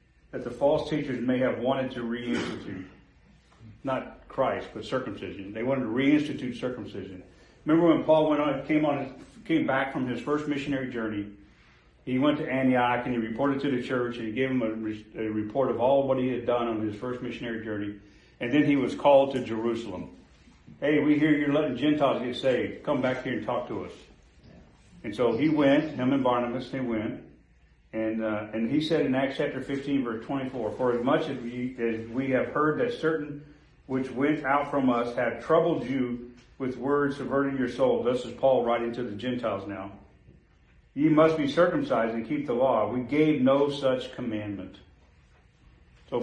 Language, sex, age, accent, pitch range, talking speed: English, male, 40-59, American, 110-140 Hz, 190 wpm